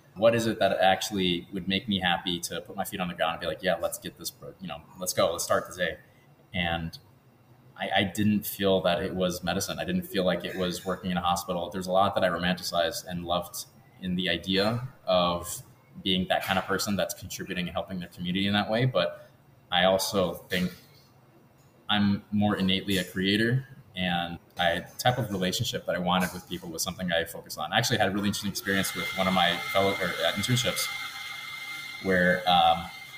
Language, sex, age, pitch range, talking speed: English, male, 20-39, 90-110 Hz, 210 wpm